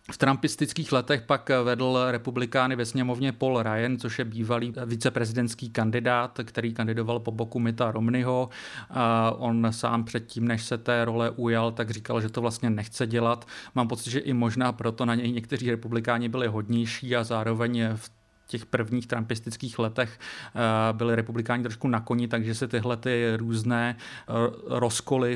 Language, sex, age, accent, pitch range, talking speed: Czech, male, 40-59, native, 115-125 Hz, 155 wpm